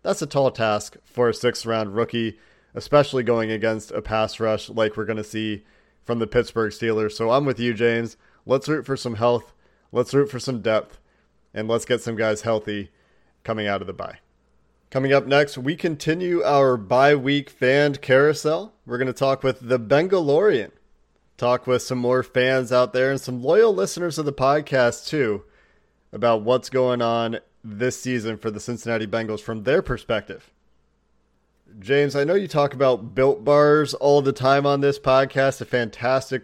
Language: English